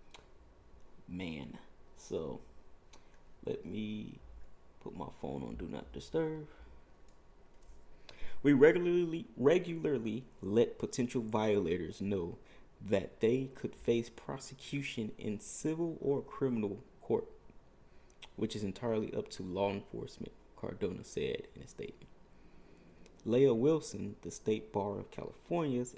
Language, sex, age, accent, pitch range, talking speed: English, male, 20-39, American, 100-135 Hz, 110 wpm